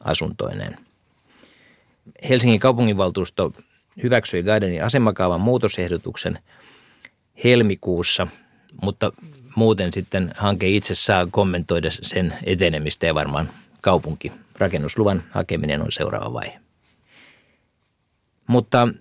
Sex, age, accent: male, 50-69, native